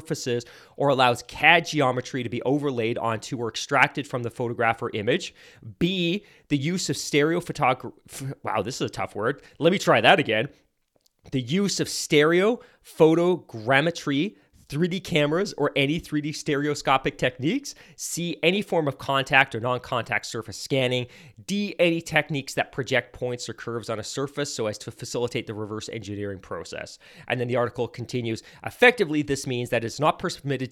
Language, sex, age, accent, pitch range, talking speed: English, male, 30-49, American, 115-155 Hz, 165 wpm